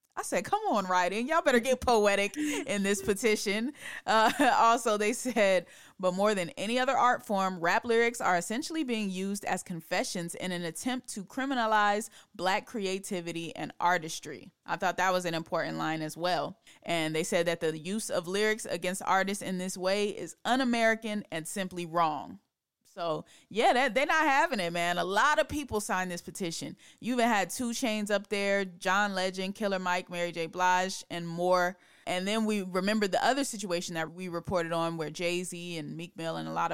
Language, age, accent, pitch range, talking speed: English, 30-49, American, 175-215 Hz, 190 wpm